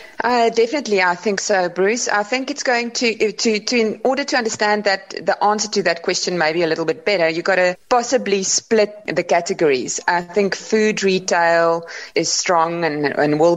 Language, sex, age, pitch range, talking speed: English, female, 30-49, 160-195 Hz, 200 wpm